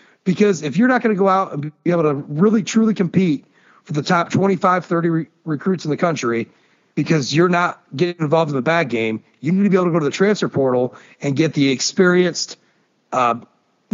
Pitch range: 150-195 Hz